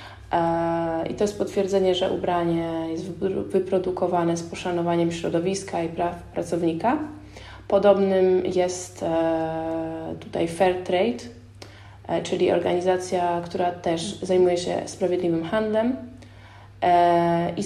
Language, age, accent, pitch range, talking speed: Polish, 20-39, native, 155-180 Hz, 90 wpm